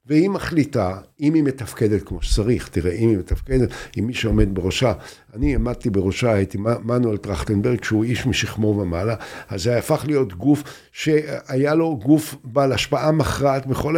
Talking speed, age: 165 wpm, 60-79